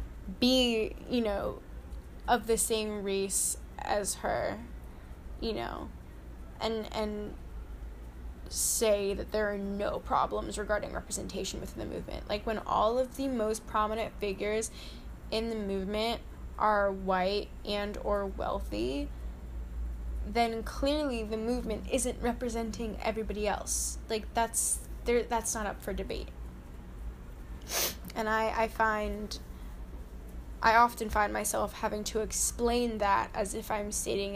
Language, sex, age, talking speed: English, female, 10-29, 125 wpm